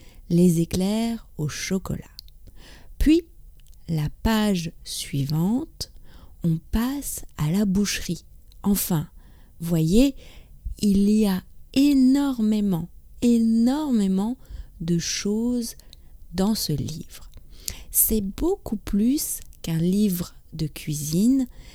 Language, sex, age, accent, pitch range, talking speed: English, female, 40-59, French, 175-235 Hz, 90 wpm